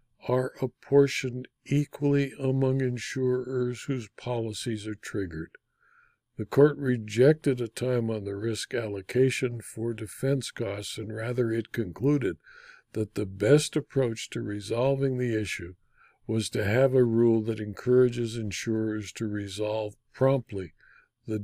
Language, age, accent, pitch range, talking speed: English, 60-79, American, 110-140 Hz, 125 wpm